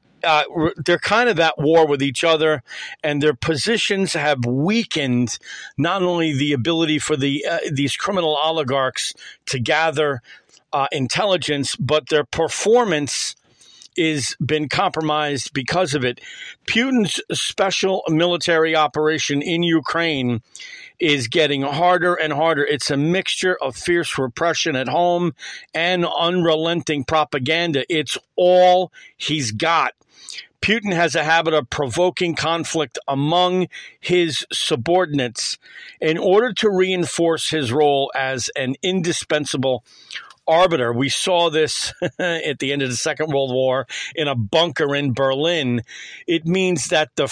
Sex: male